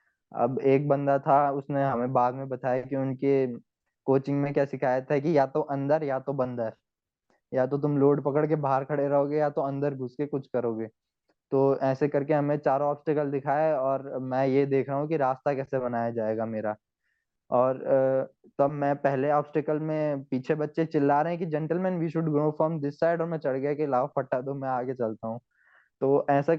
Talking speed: 205 wpm